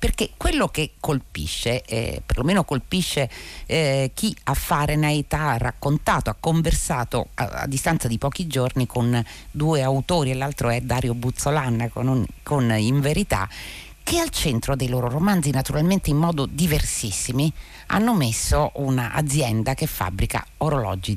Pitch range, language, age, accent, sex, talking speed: 115-150 Hz, Italian, 50-69, native, female, 140 wpm